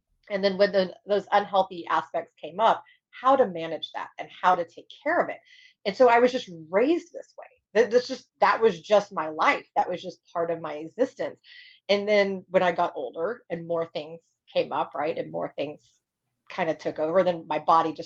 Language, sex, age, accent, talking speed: English, female, 30-49, American, 210 wpm